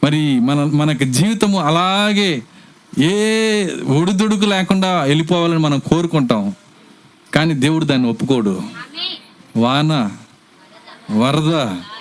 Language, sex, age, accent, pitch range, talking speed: Telugu, male, 50-69, native, 155-230 Hz, 85 wpm